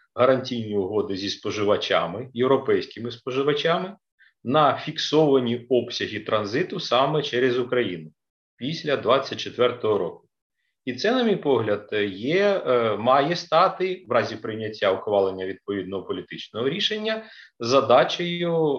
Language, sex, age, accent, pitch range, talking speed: Ukrainian, male, 40-59, native, 115-150 Hz, 100 wpm